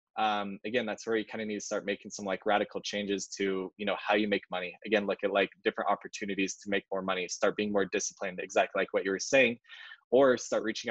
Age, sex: 20-39, male